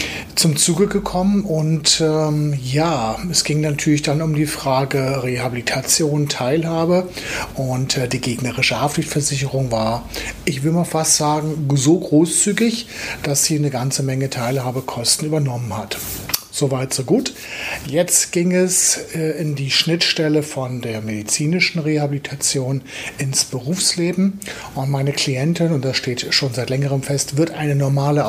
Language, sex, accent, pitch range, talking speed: German, male, German, 135-160 Hz, 135 wpm